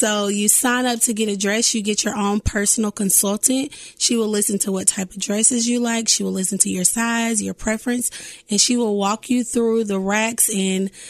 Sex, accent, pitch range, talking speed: female, American, 195-235 Hz, 220 wpm